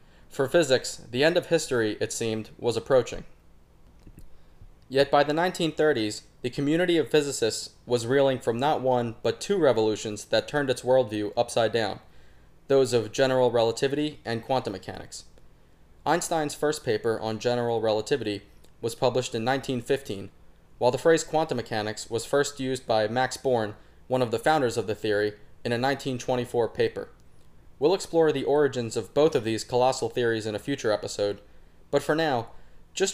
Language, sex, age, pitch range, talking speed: English, male, 20-39, 105-140 Hz, 160 wpm